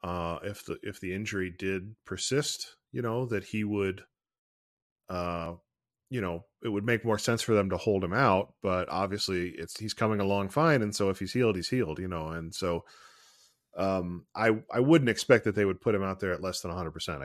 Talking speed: 220 wpm